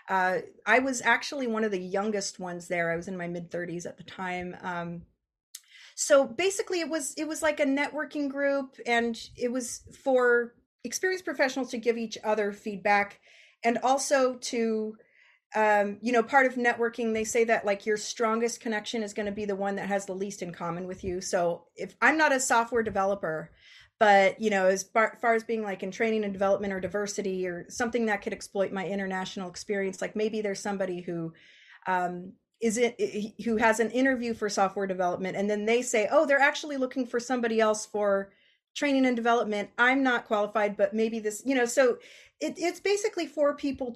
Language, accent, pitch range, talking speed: English, American, 200-265 Hz, 200 wpm